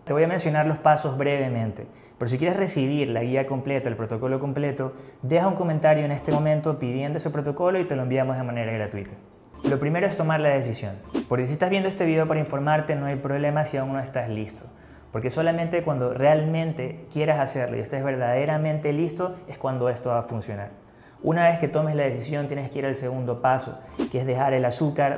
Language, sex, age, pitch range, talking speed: Spanish, male, 20-39, 120-150 Hz, 210 wpm